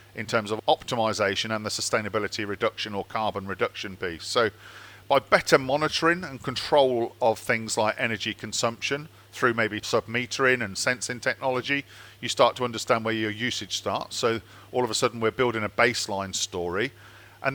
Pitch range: 105-125 Hz